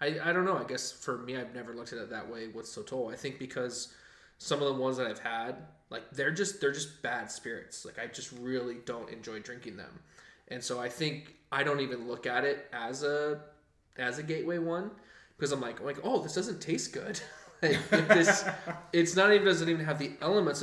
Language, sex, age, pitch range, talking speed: English, male, 20-39, 115-145 Hz, 220 wpm